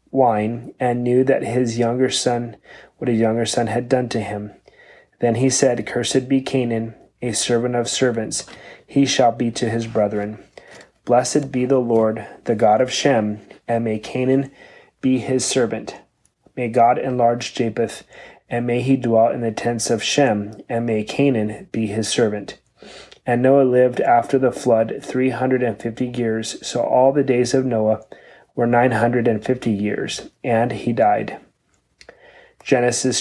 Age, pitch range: 30-49, 115-130 Hz